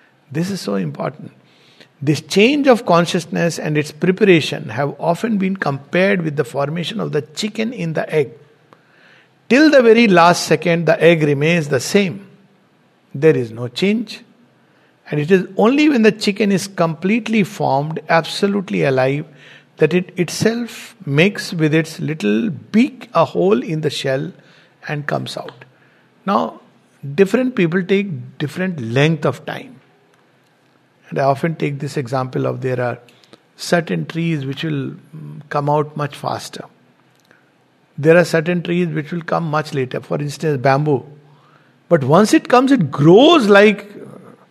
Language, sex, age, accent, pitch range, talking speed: English, male, 60-79, Indian, 145-195 Hz, 150 wpm